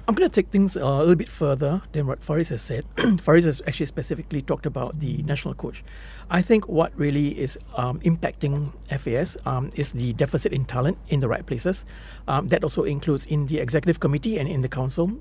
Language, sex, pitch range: English, male, 140-185 Hz